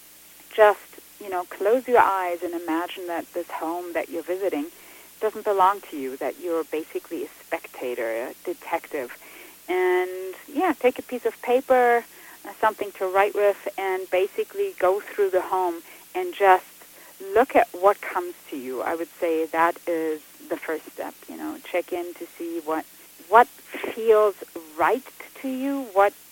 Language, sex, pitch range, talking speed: English, female, 175-265 Hz, 160 wpm